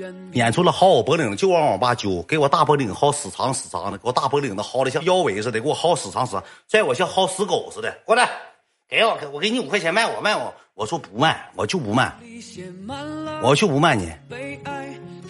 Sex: male